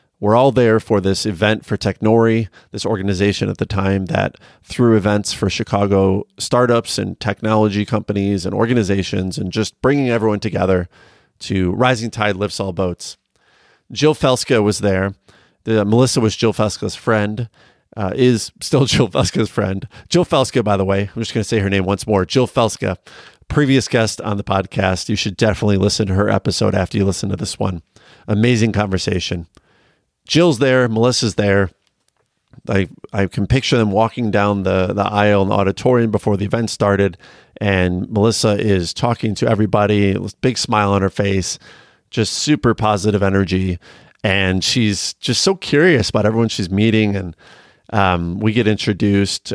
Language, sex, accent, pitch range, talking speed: English, male, American, 100-115 Hz, 165 wpm